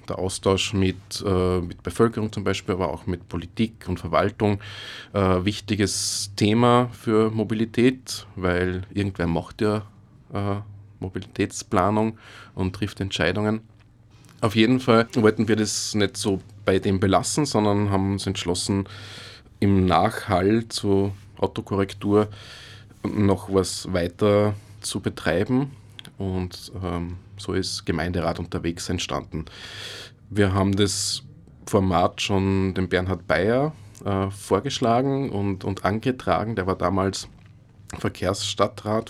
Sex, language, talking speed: male, German, 115 wpm